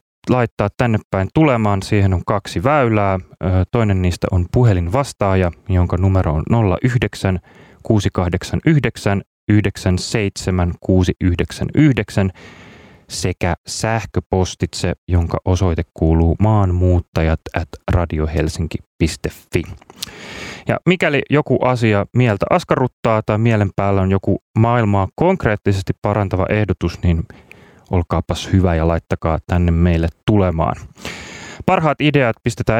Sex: male